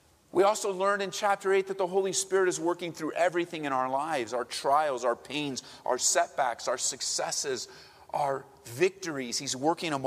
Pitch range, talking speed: 125-185 Hz, 180 wpm